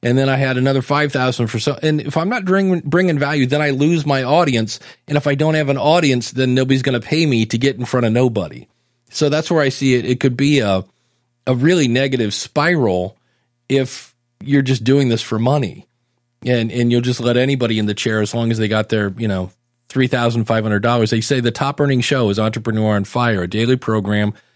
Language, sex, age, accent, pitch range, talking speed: English, male, 40-59, American, 115-140 Hz, 235 wpm